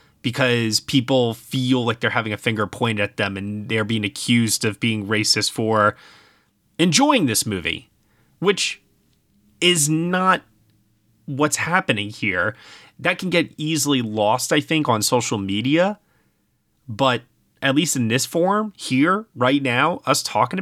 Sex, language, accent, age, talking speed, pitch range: male, English, American, 30-49, 145 wpm, 110-145 Hz